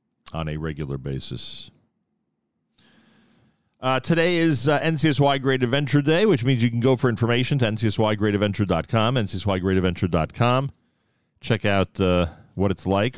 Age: 40-59